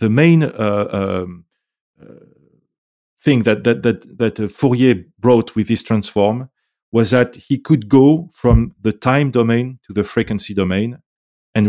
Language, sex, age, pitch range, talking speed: English, male, 40-59, 100-125 Hz, 145 wpm